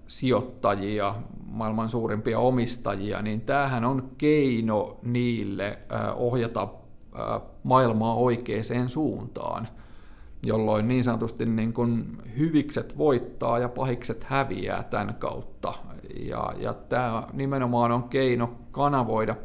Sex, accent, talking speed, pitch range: male, native, 100 wpm, 105-125 Hz